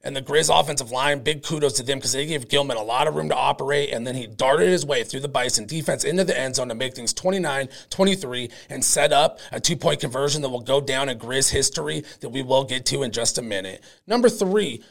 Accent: American